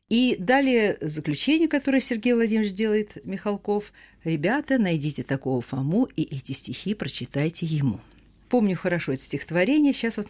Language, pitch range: Russian, 155-235 Hz